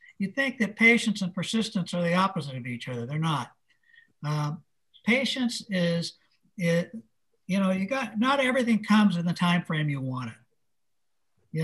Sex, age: male, 60-79